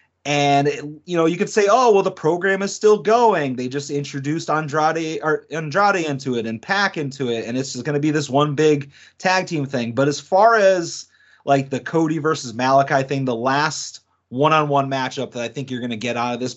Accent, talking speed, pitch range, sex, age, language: American, 230 wpm, 130-165 Hz, male, 30-49, English